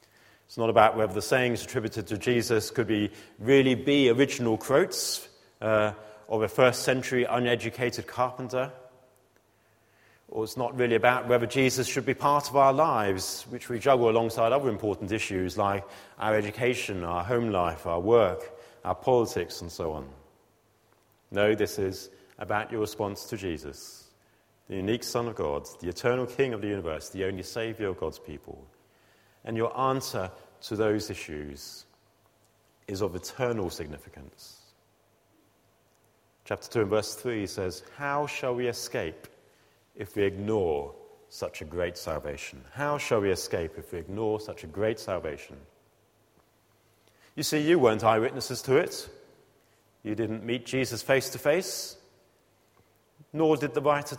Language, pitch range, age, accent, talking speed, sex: English, 105-130 Hz, 40-59, British, 150 wpm, male